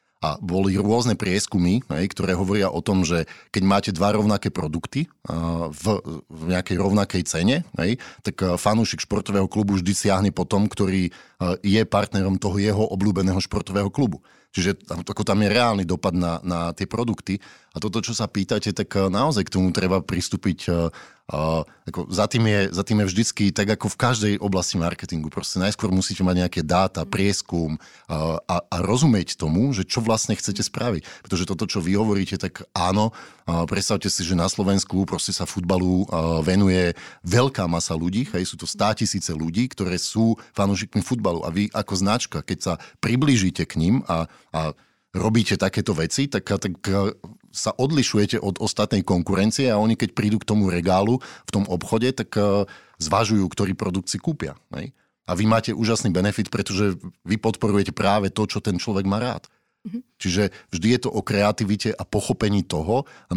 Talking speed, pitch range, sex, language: 170 wpm, 90-105 Hz, male, Slovak